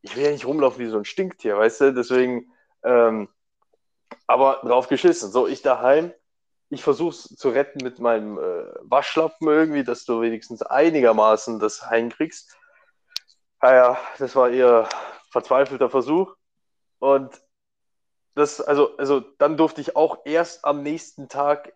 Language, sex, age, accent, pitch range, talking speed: German, male, 20-39, German, 115-160 Hz, 145 wpm